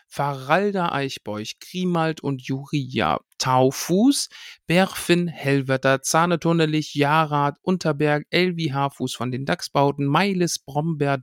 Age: 50-69